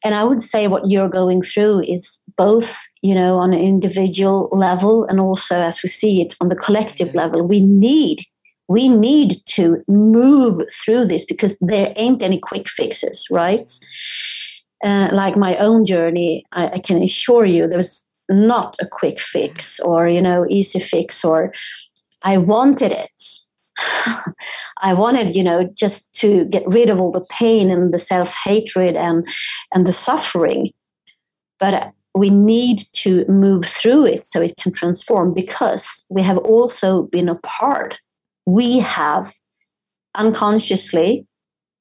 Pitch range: 180-215 Hz